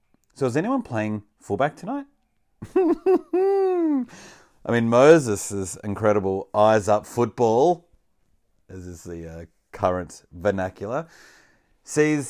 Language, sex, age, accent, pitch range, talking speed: English, male, 30-49, Australian, 95-130 Hz, 95 wpm